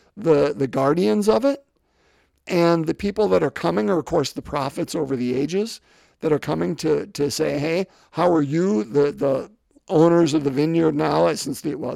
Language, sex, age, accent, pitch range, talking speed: English, male, 50-69, American, 150-210 Hz, 195 wpm